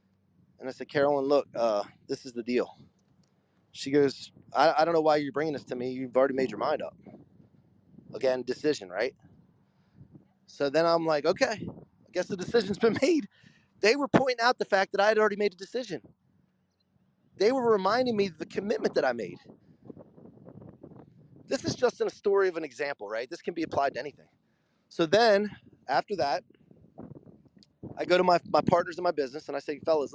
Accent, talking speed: American, 195 wpm